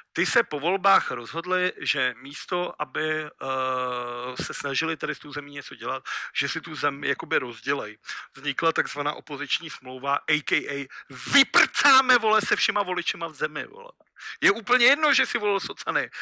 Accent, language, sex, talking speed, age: native, Czech, male, 160 wpm, 50-69